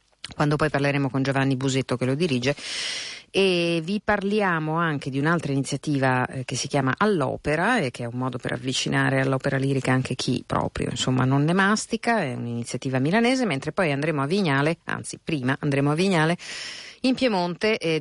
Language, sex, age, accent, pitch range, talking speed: Italian, female, 50-69, native, 135-165 Hz, 175 wpm